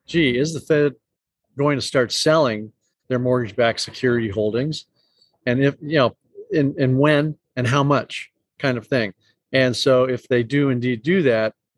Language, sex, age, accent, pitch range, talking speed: English, male, 40-59, American, 120-140 Hz, 175 wpm